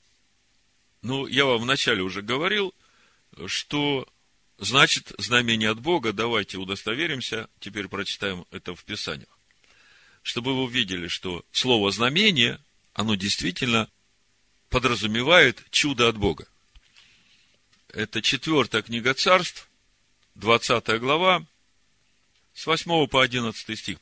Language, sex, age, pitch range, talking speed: Russian, male, 50-69, 110-165 Hz, 100 wpm